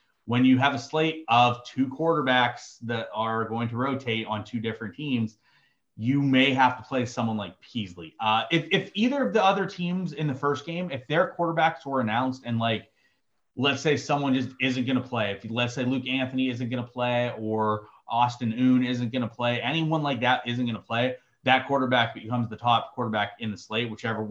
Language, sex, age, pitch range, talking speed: English, male, 30-49, 120-155 Hz, 210 wpm